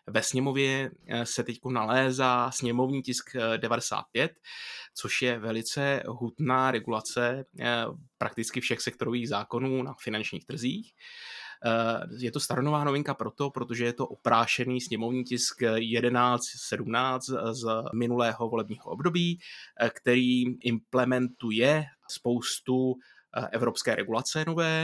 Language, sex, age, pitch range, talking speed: Czech, male, 20-39, 115-130 Hz, 100 wpm